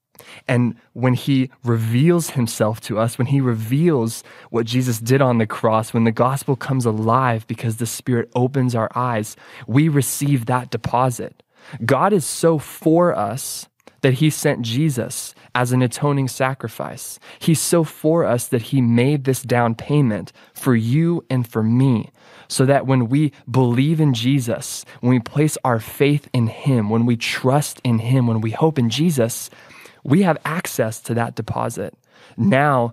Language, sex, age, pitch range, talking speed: English, male, 20-39, 115-135 Hz, 165 wpm